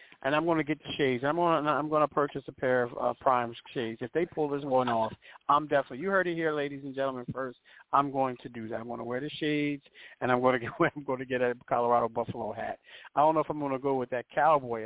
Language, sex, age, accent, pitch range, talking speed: English, male, 40-59, American, 125-150 Hz, 285 wpm